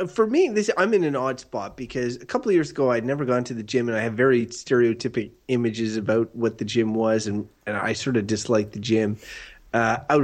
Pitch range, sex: 115-145 Hz, male